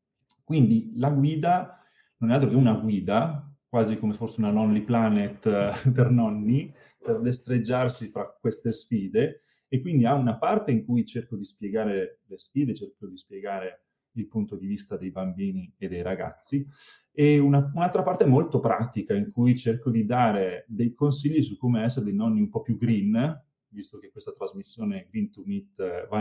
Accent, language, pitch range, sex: native, Italian, 110-140 Hz, male